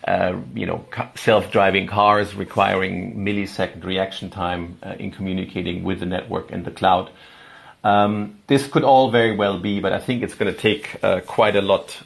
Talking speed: 185 wpm